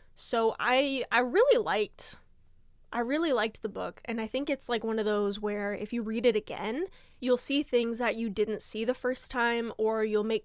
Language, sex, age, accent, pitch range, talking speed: English, female, 10-29, American, 210-250 Hz, 210 wpm